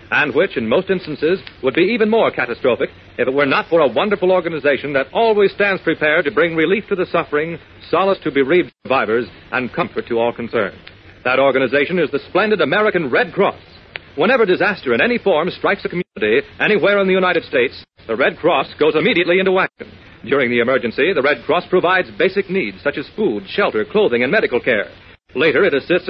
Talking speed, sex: 195 wpm, male